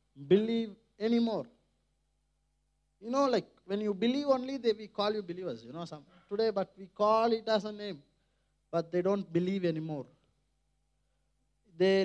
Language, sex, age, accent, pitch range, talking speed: Tamil, male, 20-39, native, 165-225 Hz, 165 wpm